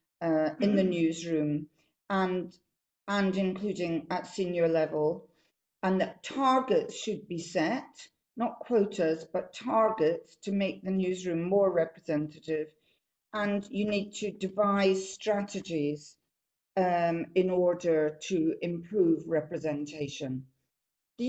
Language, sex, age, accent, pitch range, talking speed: English, female, 50-69, British, 165-215 Hz, 110 wpm